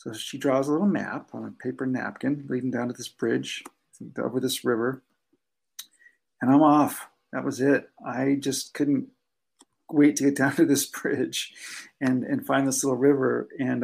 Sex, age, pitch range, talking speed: male, 50-69, 130-145 Hz, 180 wpm